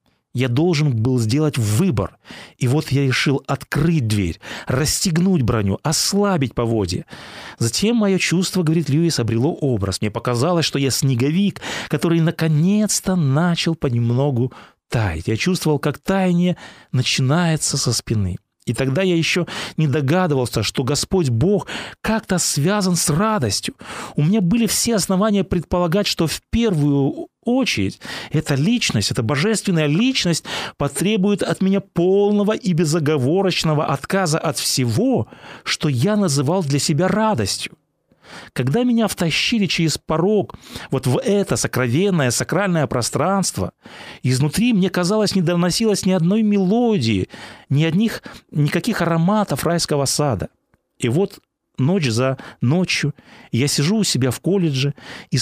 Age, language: 30-49, Russian